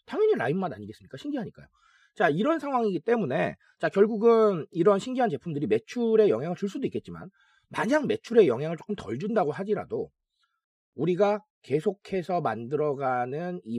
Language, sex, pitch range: Korean, male, 135-220 Hz